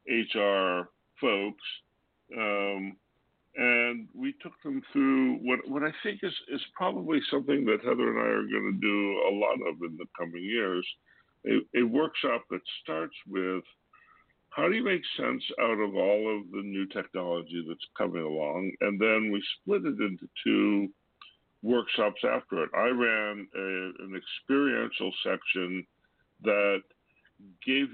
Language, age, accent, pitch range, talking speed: English, 60-79, American, 90-105 Hz, 150 wpm